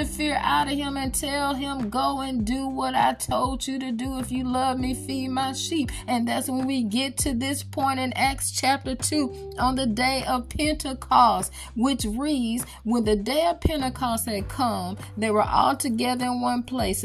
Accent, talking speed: American, 195 wpm